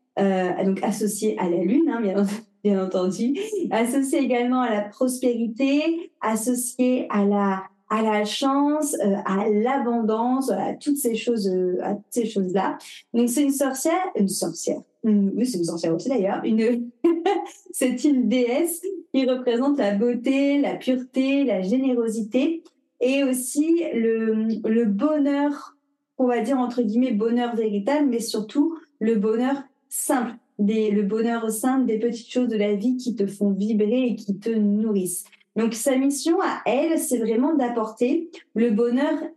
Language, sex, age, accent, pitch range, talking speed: French, female, 30-49, French, 220-275 Hz, 150 wpm